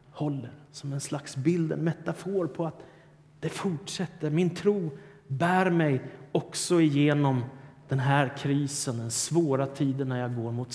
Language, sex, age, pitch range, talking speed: Swedish, male, 30-49, 135-155 Hz, 150 wpm